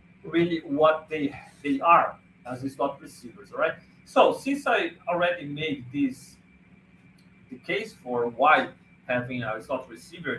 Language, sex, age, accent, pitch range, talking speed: English, male, 40-59, Brazilian, 140-195 Hz, 140 wpm